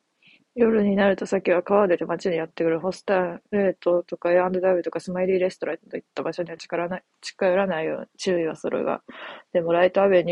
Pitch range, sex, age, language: 170-195 Hz, female, 20-39, Japanese